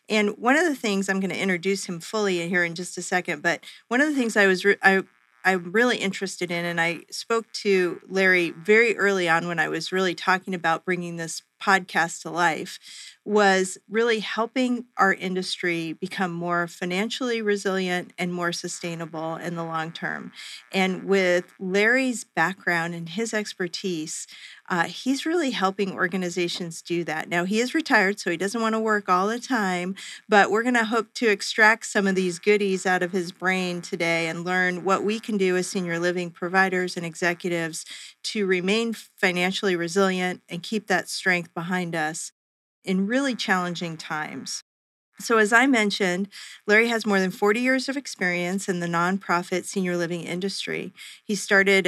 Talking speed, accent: 175 wpm, American